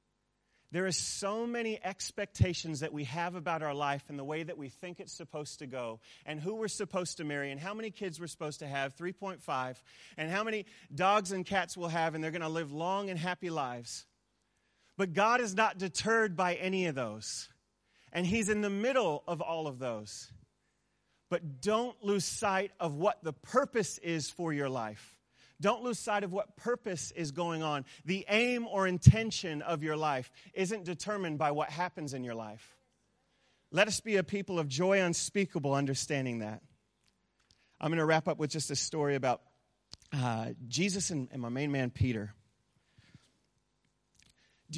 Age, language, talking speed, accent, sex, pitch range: 30-49, English, 180 wpm, American, male, 140-190 Hz